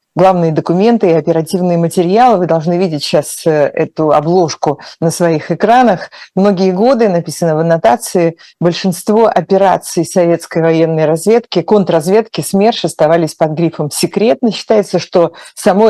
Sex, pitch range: female, 165-195 Hz